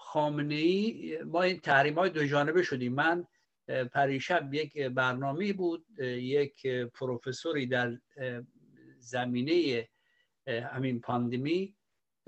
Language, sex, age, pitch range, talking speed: Persian, male, 60-79, 130-175 Hz, 95 wpm